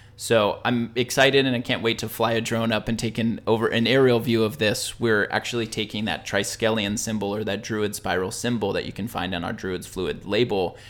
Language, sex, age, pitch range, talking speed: English, male, 20-39, 100-115 Hz, 220 wpm